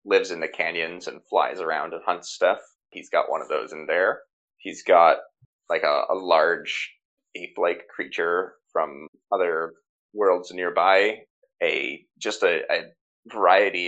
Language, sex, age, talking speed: English, male, 20-39, 145 wpm